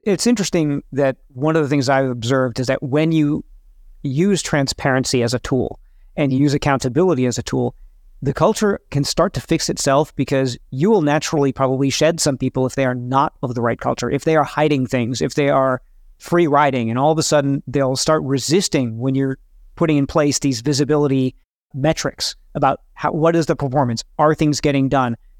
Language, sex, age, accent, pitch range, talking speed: English, male, 40-59, American, 135-160 Hz, 195 wpm